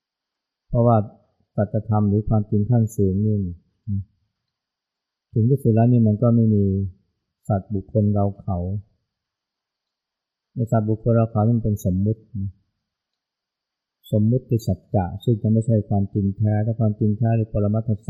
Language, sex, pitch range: Thai, male, 100-110 Hz